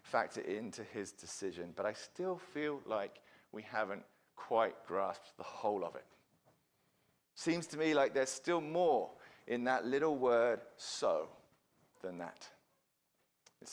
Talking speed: 140 wpm